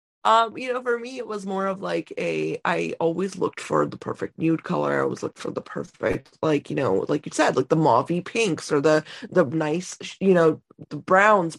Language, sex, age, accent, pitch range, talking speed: English, female, 20-39, American, 165-200 Hz, 225 wpm